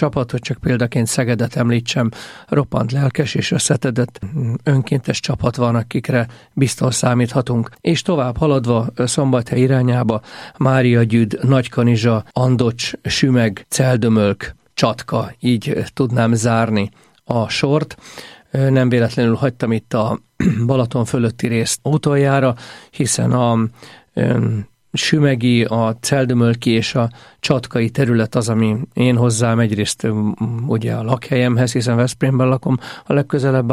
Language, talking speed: Hungarian, 115 wpm